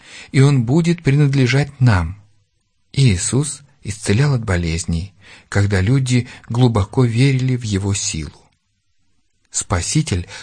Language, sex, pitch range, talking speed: Russian, male, 95-130 Hz, 100 wpm